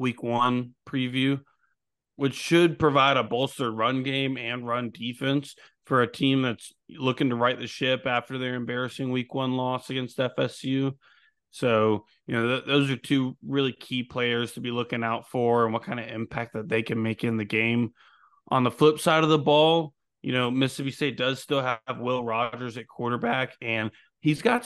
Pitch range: 120-135 Hz